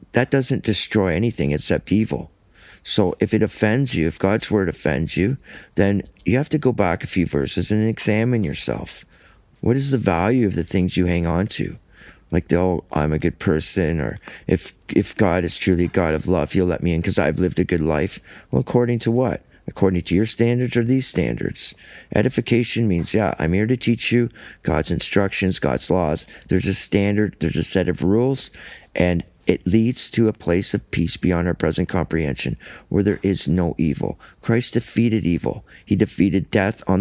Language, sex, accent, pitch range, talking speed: English, male, American, 85-110 Hz, 195 wpm